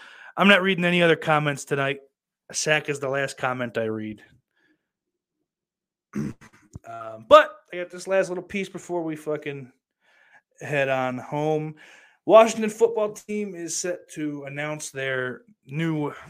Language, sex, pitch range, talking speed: English, male, 145-230 Hz, 135 wpm